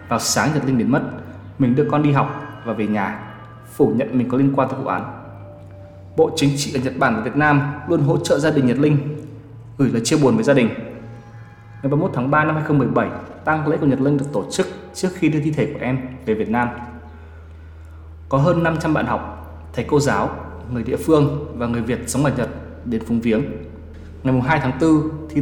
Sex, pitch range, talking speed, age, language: male, 115-150 Hz, 225 wpm, 20-39, Vietnamese